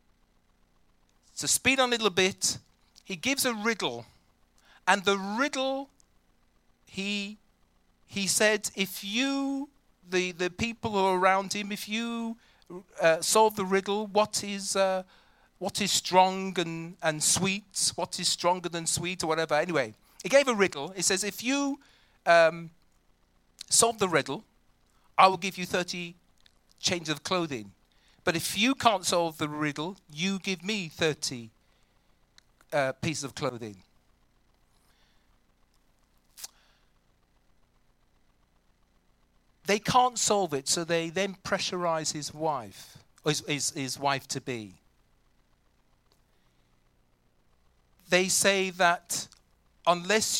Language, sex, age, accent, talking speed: English, male, 40-59, British, 120 wpm